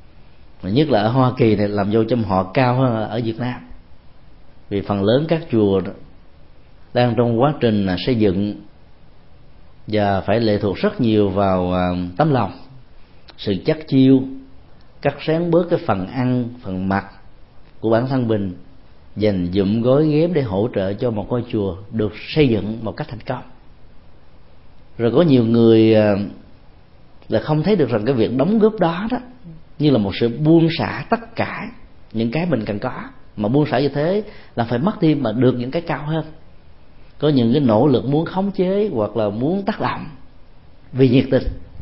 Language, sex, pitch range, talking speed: Vietnamese, male, 100-145 Hz, 180 wpm